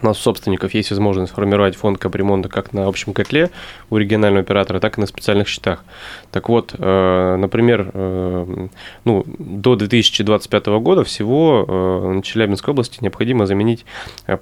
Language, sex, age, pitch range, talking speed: Russian, male, 20-39, 95-110 Hz, 135 wpm